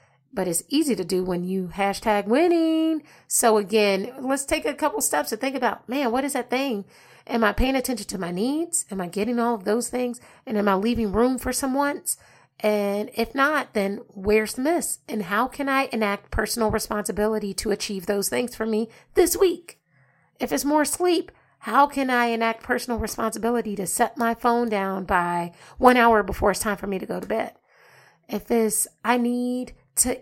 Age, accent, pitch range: 30-49, American, 195-250 Hz